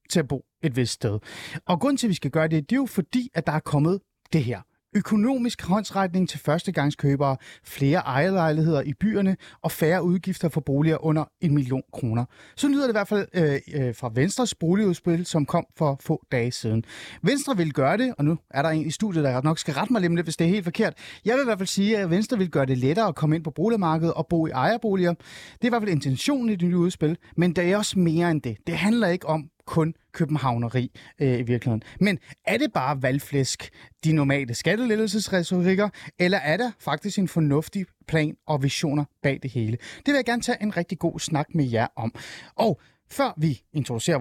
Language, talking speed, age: Danish, 220 wpm, 30-49